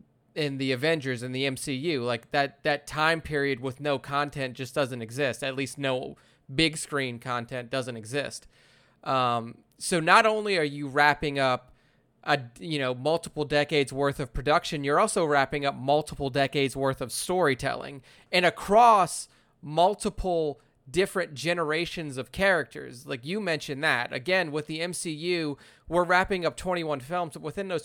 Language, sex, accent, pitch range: English, male, American, 135-160 Hz